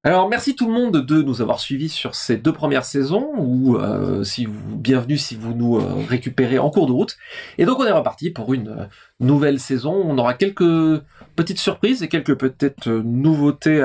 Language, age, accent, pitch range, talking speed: French, 30-49, French, 125-175 Hz, 200 wpm